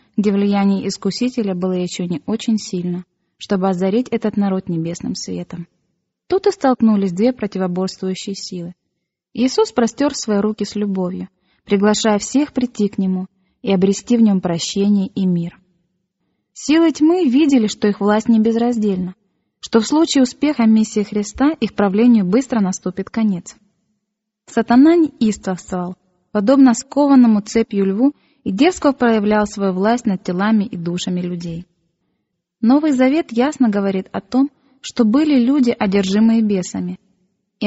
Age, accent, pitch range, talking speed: 20-39, native, 190-240 Hz, 135 wpm